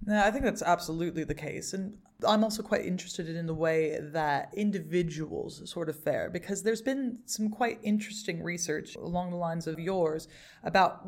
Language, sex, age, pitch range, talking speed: English, female, 20-39, 155-200 Hz, 175 wpm